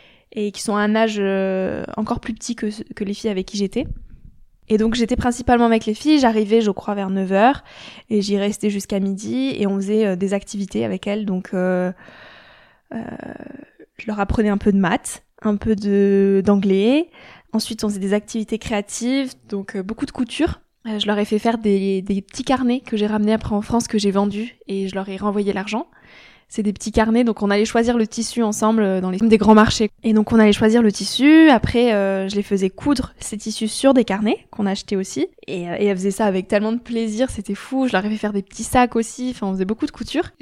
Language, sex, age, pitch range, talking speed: French, female, 20-39, 200-230 Hz, 225 wpm